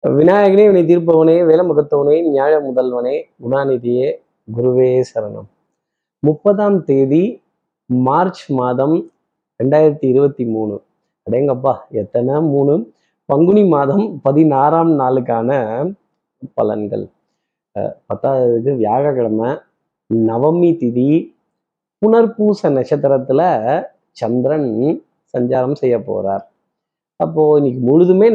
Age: 30-49